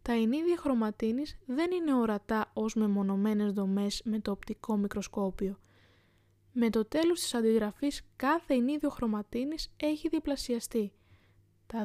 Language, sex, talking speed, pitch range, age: Greek, female, 120 wpm, 205-270 Hz, 20-39